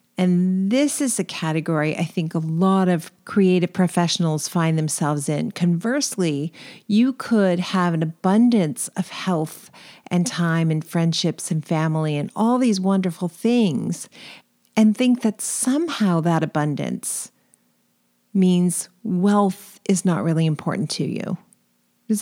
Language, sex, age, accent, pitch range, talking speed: English, female, 40-59, American, 165-215 Hz, 130 wpm